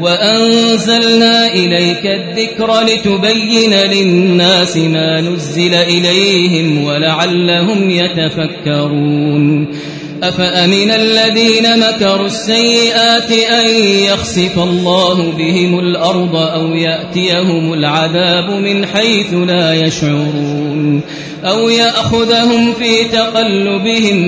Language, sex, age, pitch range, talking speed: Arabic, male, 30-49, 165-220 Hz, 75 wpm